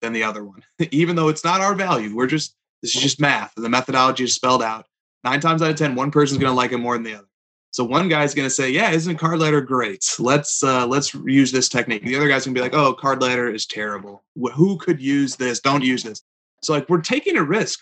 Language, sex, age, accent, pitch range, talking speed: English, male, 20-39, American, 125-155 Hz, 265 wpm